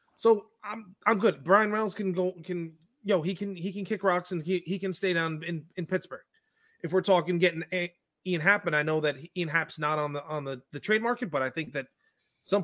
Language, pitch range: English, 150-185 Hz